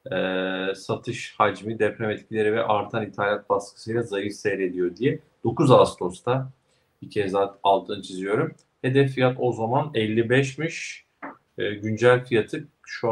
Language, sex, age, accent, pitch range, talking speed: Turkish, male, 50-69, native, 105-130 Hz, 130 wpm